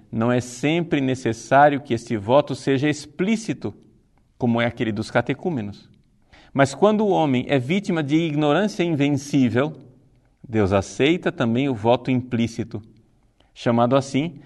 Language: Portuguese